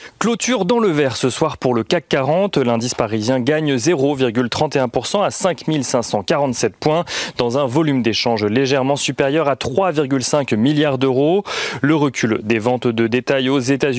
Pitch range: 120-155 Hz